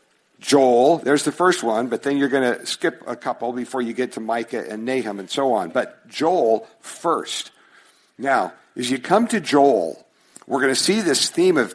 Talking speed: 200 wpm